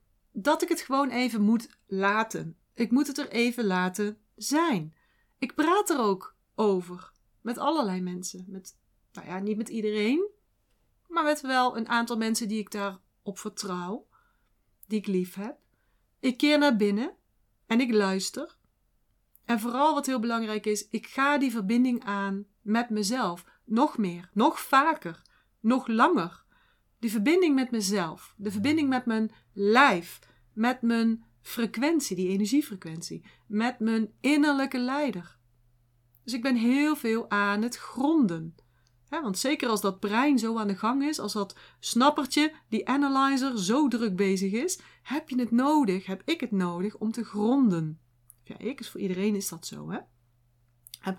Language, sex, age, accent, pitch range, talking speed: Dutch, female, 40-59, Dutch, 195-265 Hz, 155 wpm